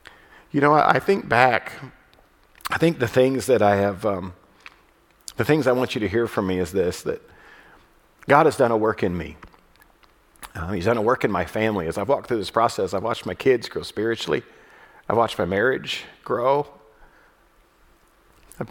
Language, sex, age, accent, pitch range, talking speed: English, male, 50-69, American, 105-145 Hz, 185 wpm